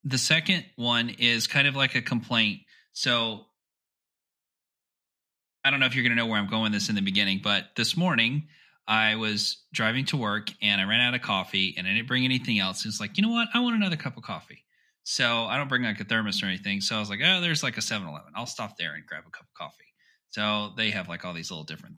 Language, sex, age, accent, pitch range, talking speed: English, male, 30-49, American, 110-155 Hz, 250 wpm